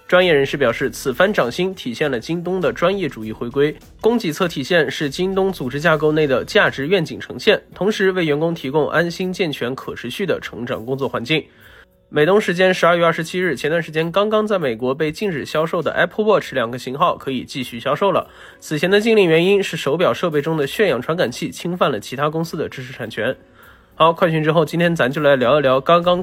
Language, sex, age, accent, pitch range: Chinese, male, 20-39, native, 150-195 Hz